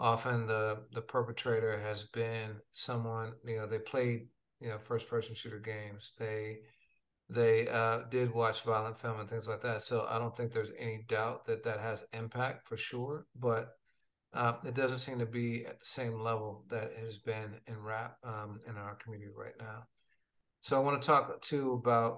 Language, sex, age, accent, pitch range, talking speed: English, male, 40-59, American, 110-120 Hz, 190 wpm